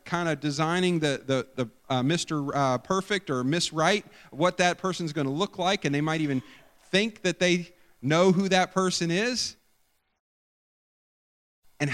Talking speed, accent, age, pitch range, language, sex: 165 wpm, American, 40-59, 135-185 Hz, English, male